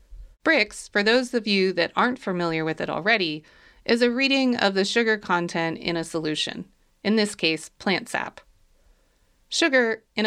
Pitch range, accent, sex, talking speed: 175-245 Hz, American, female, 165 wpm